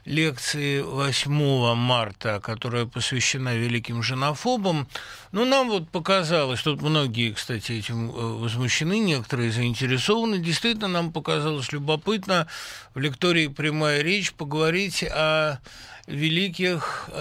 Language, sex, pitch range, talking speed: Russian, male, 135-170 Hz, 100 wpm